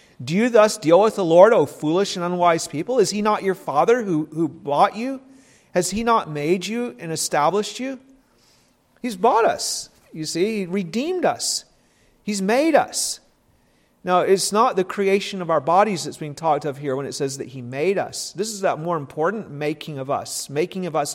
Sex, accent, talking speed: male, American, 200 wpm